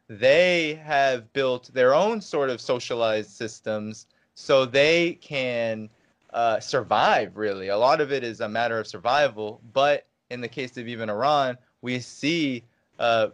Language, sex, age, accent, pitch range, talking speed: English, male, 20-39, American, 115-150 Hz, 155 wpm